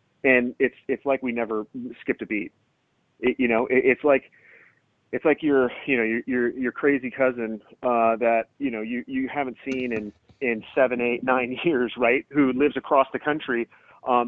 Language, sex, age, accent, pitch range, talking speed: English, male, 30-49, American, 115-140 Hz, 195 wpm